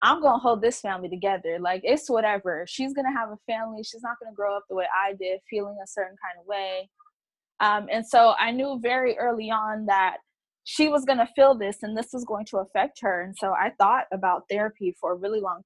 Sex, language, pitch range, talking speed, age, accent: female, English, 200-255 Hz, 230 wpm, 20-39, American